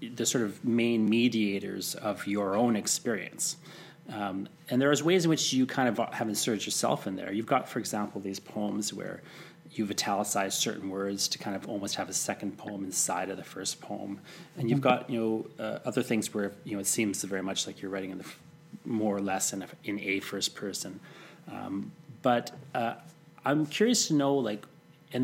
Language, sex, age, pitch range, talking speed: English, male, 30-49, 100-125 Hz, 205 wpm